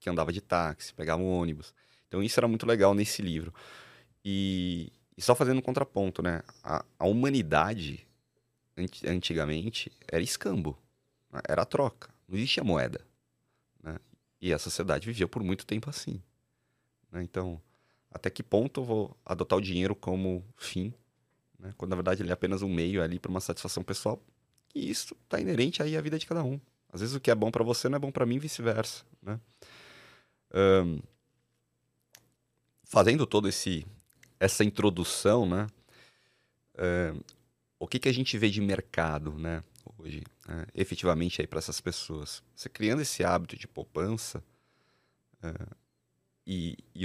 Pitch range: 90-115 Hz